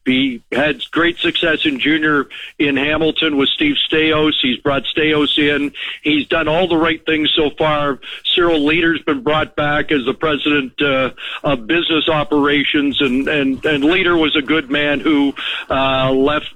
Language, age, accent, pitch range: English, 50-69, American, 135-160 Hz